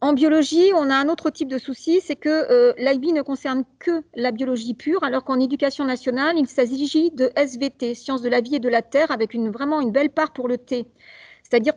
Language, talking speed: English, 230 wpm